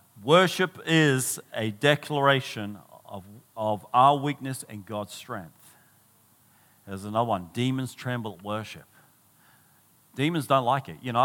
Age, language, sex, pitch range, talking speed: 50-69, English, male, 110-140 Hz, 130 wpm